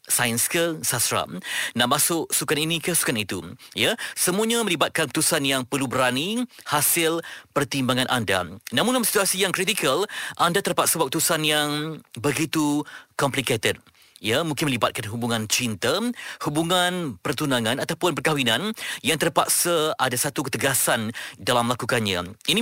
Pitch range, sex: 125-170 Hz, male